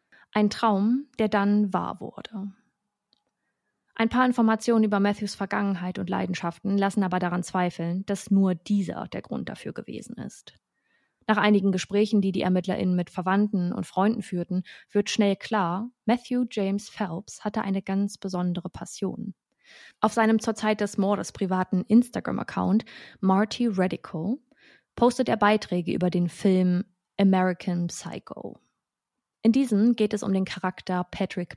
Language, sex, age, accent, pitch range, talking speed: German, female, 20-39, German, 185-215 Hz, 140 wpm